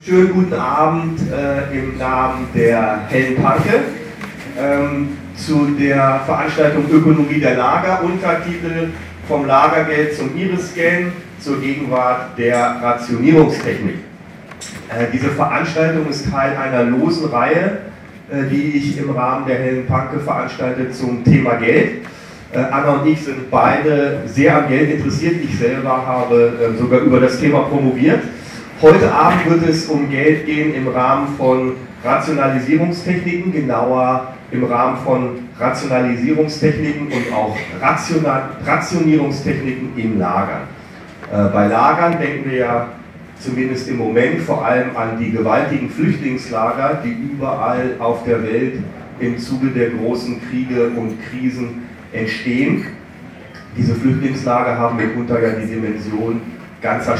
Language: German